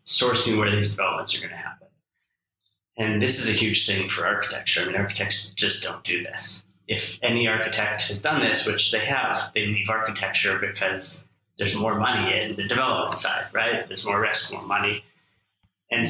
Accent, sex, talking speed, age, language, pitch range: American, male, 185 wpm, 20-39, English, 100-110 Hz